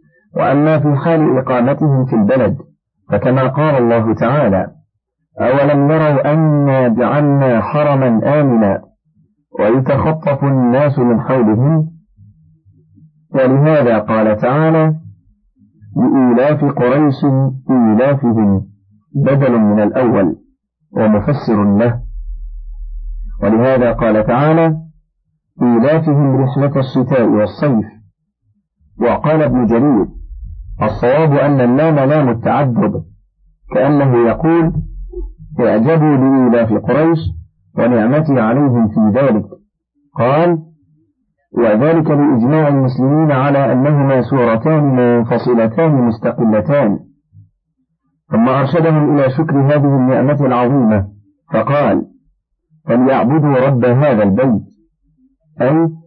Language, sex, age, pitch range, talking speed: Arabic, male, 50-69, 115-150 Hz, 85 wpm